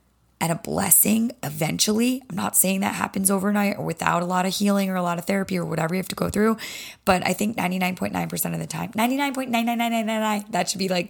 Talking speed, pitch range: 215 wpm, 170-205 Hz